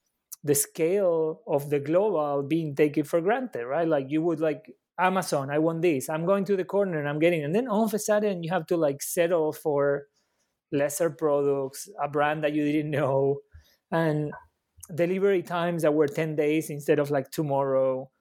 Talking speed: 190 wpm